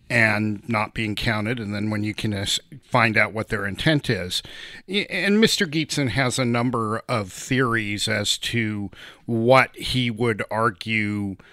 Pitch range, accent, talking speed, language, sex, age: 105-125 Hz, American, 150 wpm, English, male, 40-59